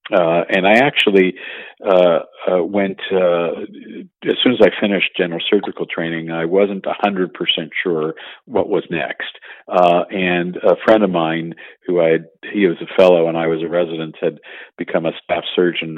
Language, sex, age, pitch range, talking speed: English, male, 50-69, 80-95 Hz, 175 wpm